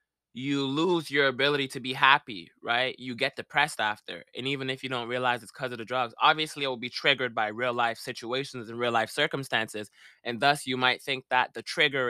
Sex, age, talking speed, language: male, 20-39, 220 wpm, English